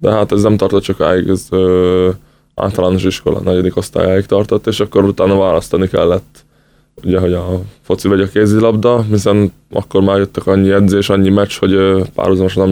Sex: male